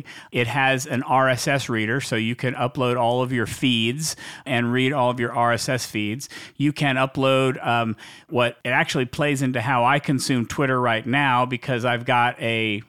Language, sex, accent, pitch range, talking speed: English, male, American, 115-135 Hz, 180 wpm